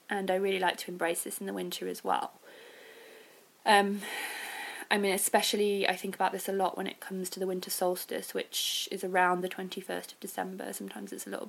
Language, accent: English, British